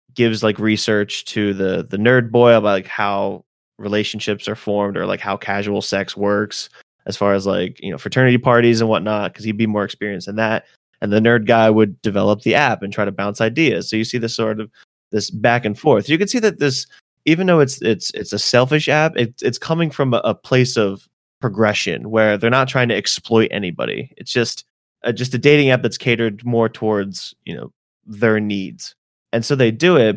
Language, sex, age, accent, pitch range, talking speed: English, male, 20-39, American, 105-120 Hz, 215 wpm